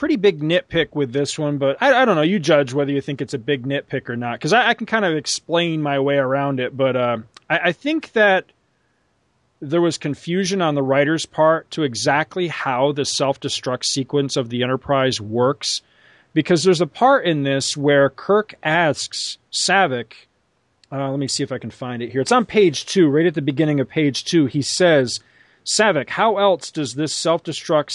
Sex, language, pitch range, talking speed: male, English, 135-170 Hz, 205 wpm